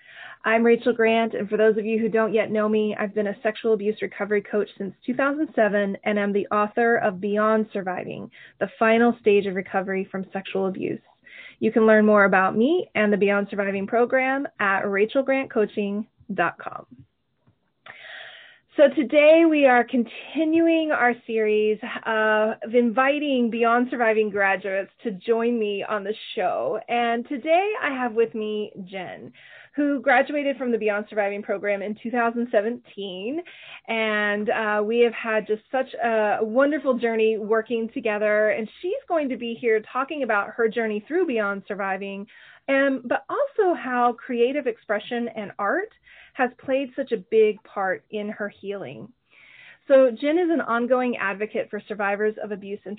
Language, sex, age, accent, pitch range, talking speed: English, female, 20-39, American, 210-255 Hz, 155 wpm